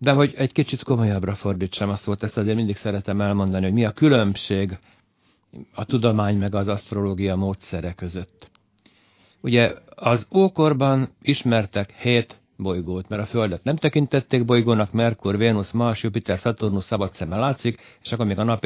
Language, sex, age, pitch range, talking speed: Hungarian, male, 60-79, 95-120 Hz, 160 wpm